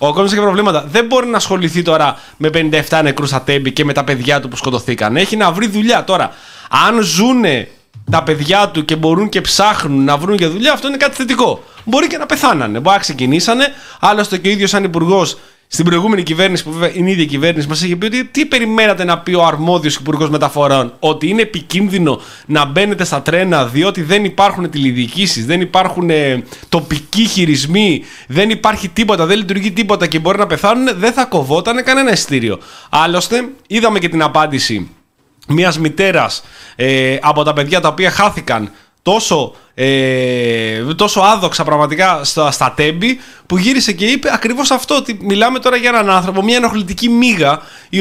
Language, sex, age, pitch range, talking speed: Greek, male, 20-39, 150-215 Hz, 175 wpm